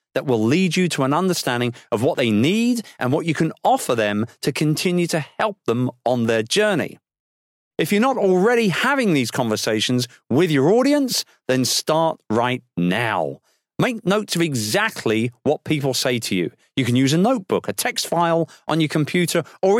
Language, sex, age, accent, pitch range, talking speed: English, male, 40-59, British, 125-185 Hz, 180 wpm